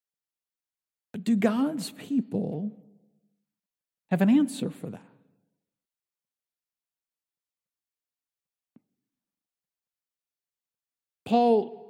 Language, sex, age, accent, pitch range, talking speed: English, male, 50-69, American, 140-200 Hz, 50 wpm